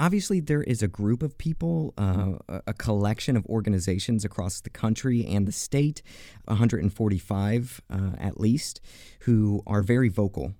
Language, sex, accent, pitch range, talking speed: English, male, American, 100-120 Hz, 145 wpm